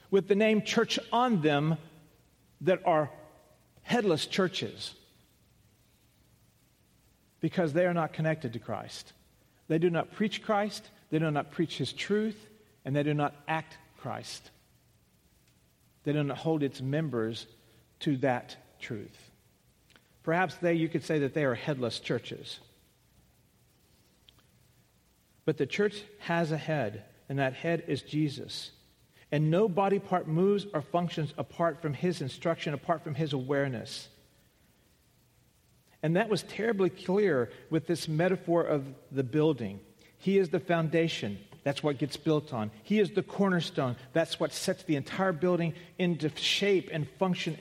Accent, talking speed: American, 140 wpm